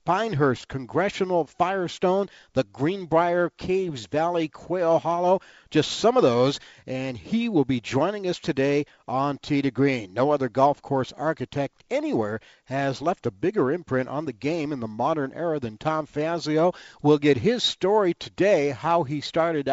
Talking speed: 160 wpm